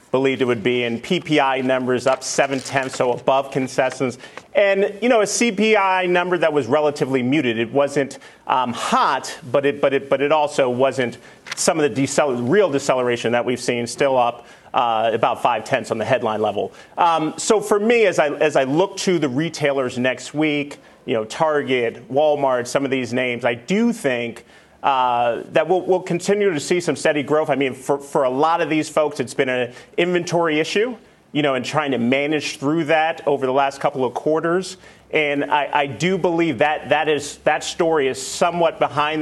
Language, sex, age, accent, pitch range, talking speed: English, male, 40-59, American, 130-170 Hz, 200 wpm